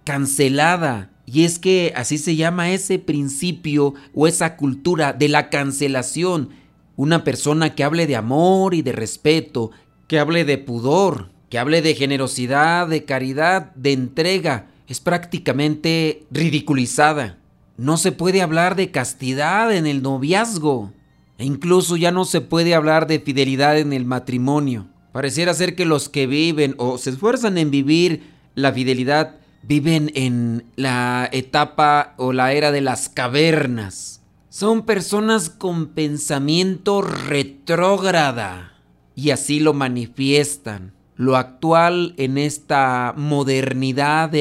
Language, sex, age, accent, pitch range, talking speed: Spanish, male, 40-59, Mexican, 135-165 Hz, 130 wpm